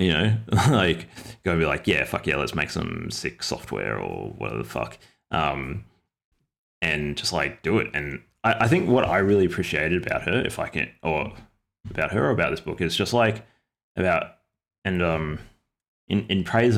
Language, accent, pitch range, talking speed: English, Australian, 75-95 Hz, 195 wpm